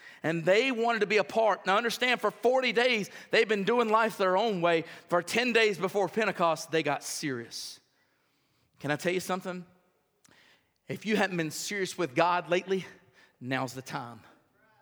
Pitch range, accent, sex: 190-260 Hz, American, male